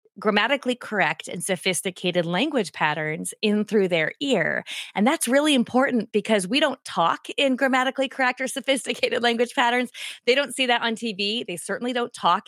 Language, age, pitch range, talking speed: English, 20-39, 195-245 Hz, 170 wpm